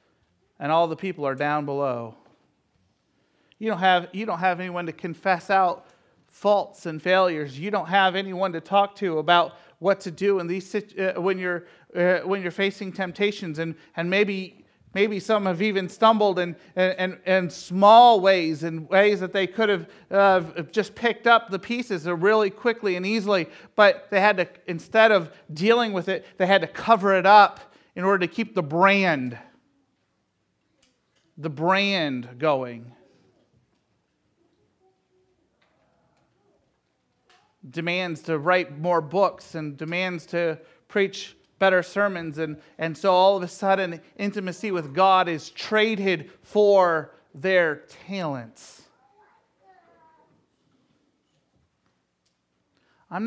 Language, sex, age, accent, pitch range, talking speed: English, male, 40-59, American, 170-200 Hz, 135 wpm